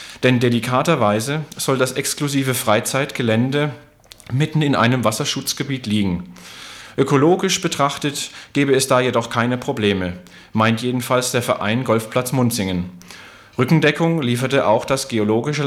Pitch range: 110-145 Hz